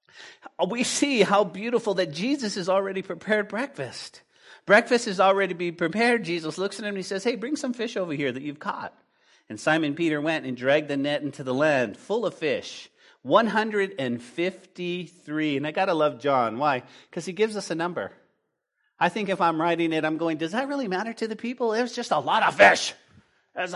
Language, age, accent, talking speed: English, 40-59, American, 205 wpm